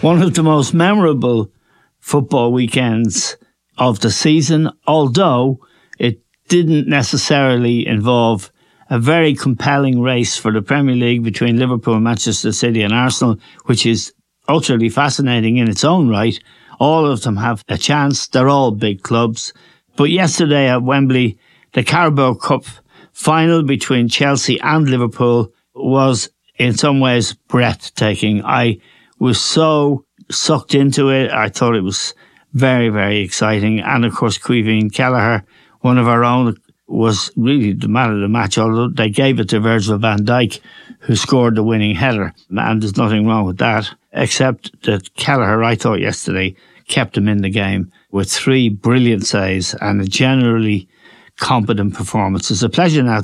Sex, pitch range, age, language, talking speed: male, 110-135 Hz, 60-79, English, 155 wpm